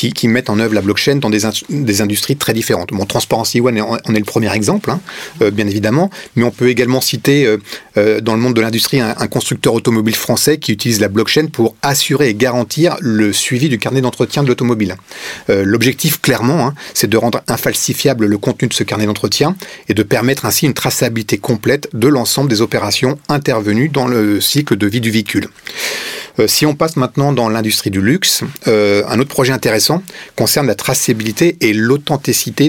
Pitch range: 110-140 Hz